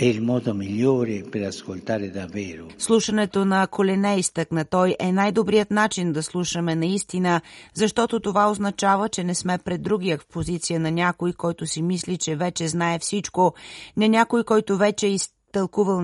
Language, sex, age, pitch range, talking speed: Bulgarian, female, 30-49, 170-200 Hz, 155 wpm